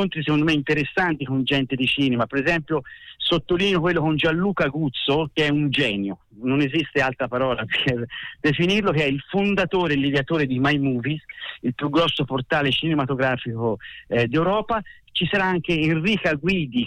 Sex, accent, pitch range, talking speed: male, native, 130-165 Hz, 160 wpm